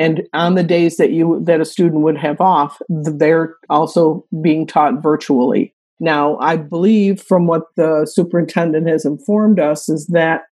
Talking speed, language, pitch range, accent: 165 wpm, English, 150-175 Hz, American